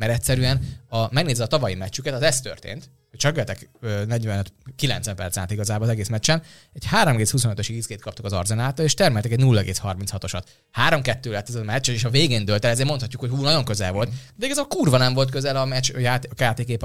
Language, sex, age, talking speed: Hungarian, male, 20-39, 205 wpm